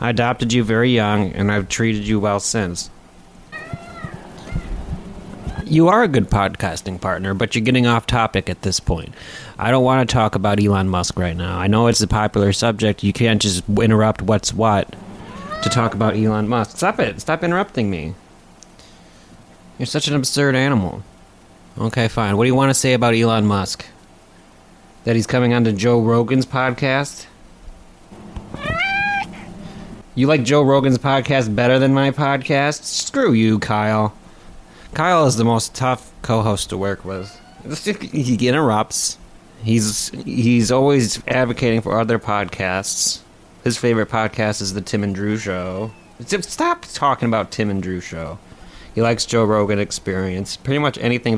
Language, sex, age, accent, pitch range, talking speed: English, male, 30-49, American, 100-125 Hz, 155 wpm